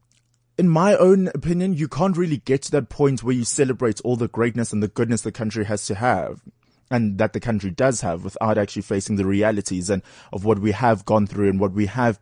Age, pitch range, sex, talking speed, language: 20-39, 100-125 Hz, male, 230 wpm, English